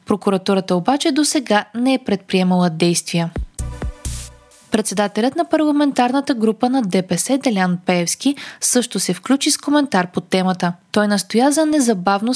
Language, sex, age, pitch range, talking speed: Bulgarian, female, 20-39, 185-270 Hz, 130 wpm